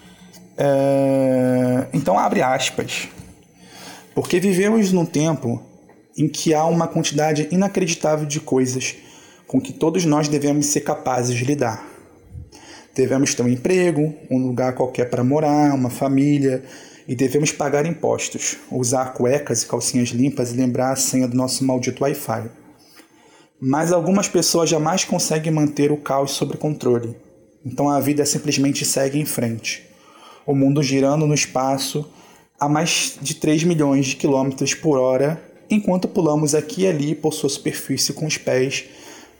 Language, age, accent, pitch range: Portuguese, 20-39, Brazilian, 130-160 Hz